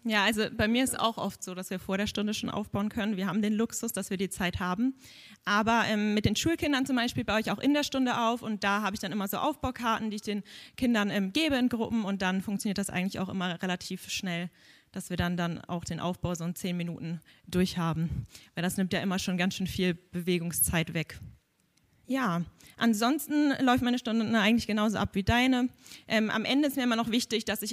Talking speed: 230 wpm